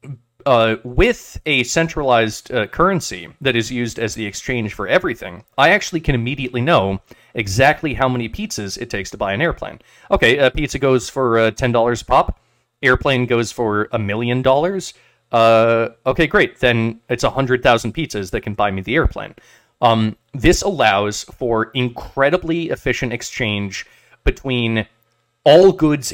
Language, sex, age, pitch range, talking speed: English, male, 30-49, 110-130 Hz, 150 wpm